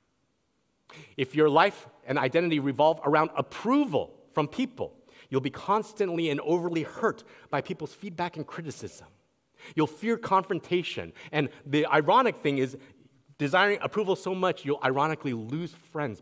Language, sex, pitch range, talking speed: English, male, 120-170 Hz, 135 wpm